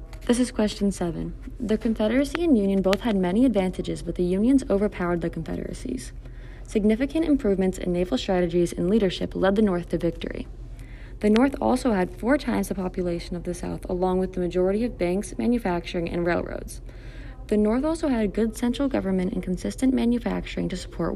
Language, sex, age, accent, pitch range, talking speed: English, female, 20-39, American, 175-230 Hz, 180 wpm